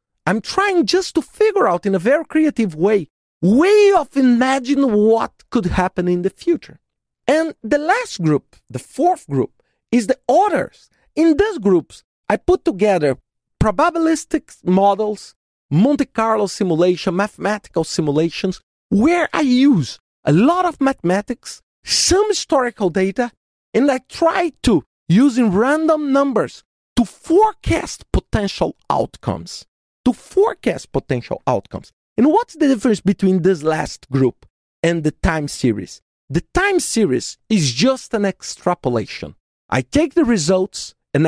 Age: 40-59